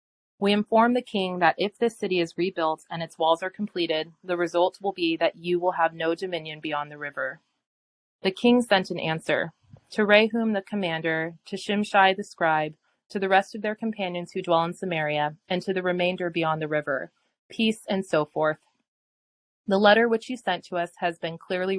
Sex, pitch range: female, 160-190 Hz